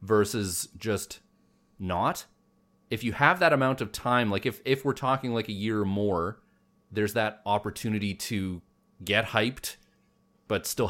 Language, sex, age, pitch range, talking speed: English, male, 30-49, 90-110 Hz, 155 wpm